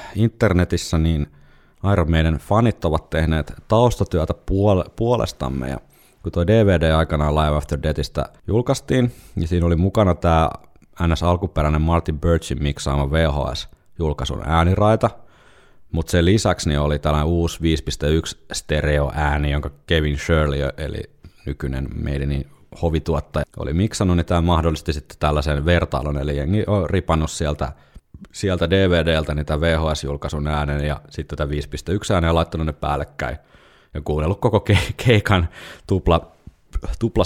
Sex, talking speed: male, 130 wpm